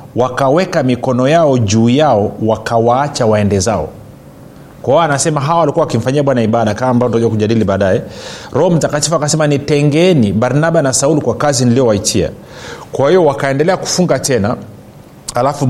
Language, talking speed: Swahili, 140 wpm